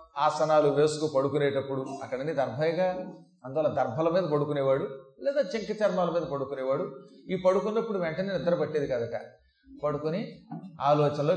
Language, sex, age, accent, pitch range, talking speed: Telugu, male, 30-49, native, 145-220 Hz, 115 wpm